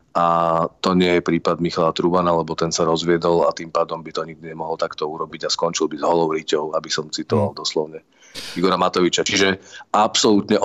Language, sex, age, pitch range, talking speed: Czech, male, 40-59, 85-105 Hz, 185 wpm